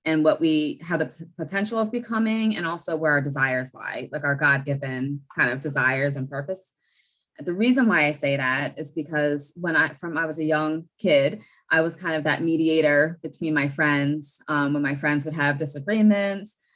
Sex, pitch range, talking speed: female, 145-185 Hz, 195 wpm